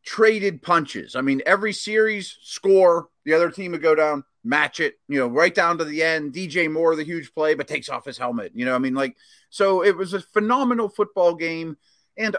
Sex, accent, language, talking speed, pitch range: male, American, English, 220 wpm, 140-195 Hz